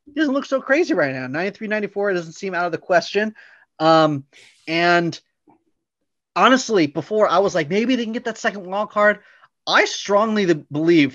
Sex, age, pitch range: male, 30-49, 145-190 Hz